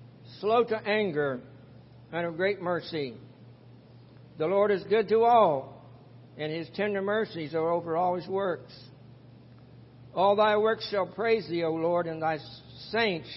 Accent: American